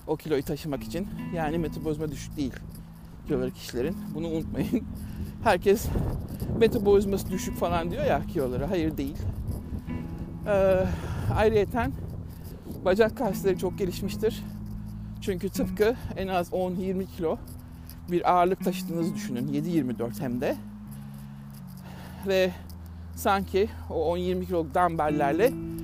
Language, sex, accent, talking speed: Turkish, male, native, 105 wpm